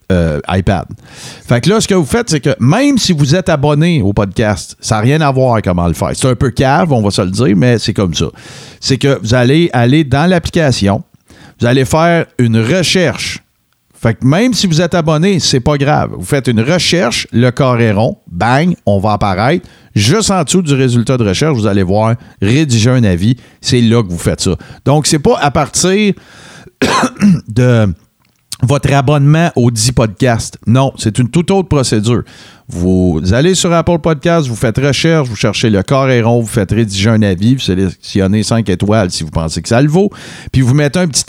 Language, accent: French, Canadian